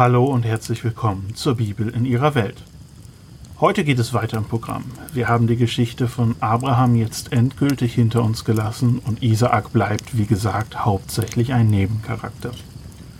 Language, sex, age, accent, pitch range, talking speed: German, male, 40-59, German, 115-130 Hz, 155 wpm